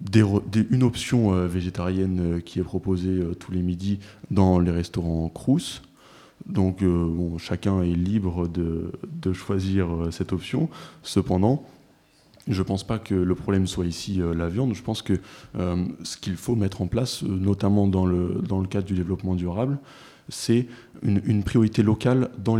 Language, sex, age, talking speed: French, male, 20-39, 170 wpm